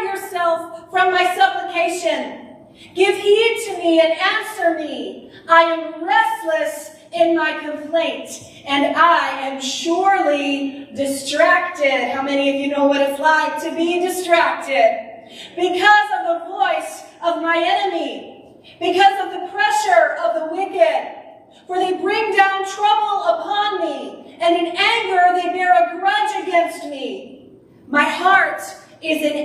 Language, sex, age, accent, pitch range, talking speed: English, female, 40-59, American, 260-355 Hz, 130 wpm